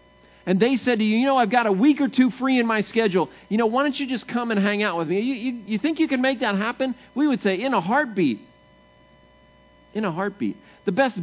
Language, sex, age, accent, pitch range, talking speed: English, male, 40-59, American, 135-215 Hz, 255 wpm